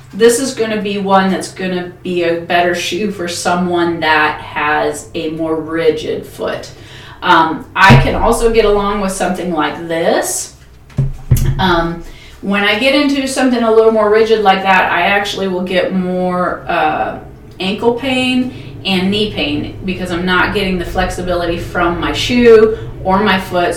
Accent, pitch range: American, 165-215 Hz